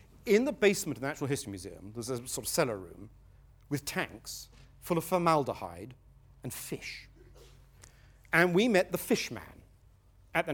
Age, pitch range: 50-69, 110-160 Hz